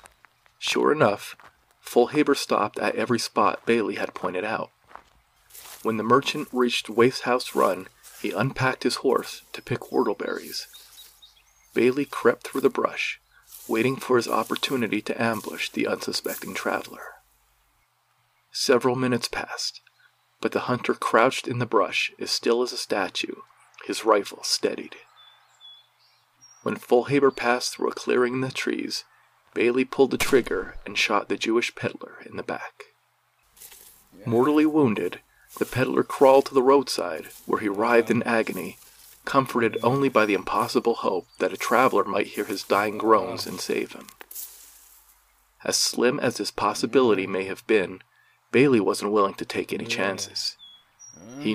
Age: 40-59